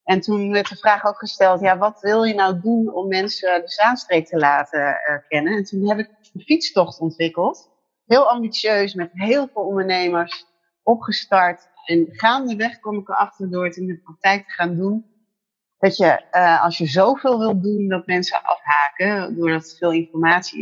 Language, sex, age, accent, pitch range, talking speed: Dutch, female, 30-49, Dutch, 175-215 Hz, 180 wpm